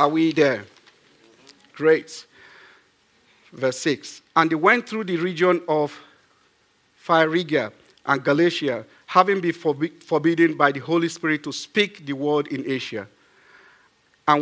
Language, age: English, 50-69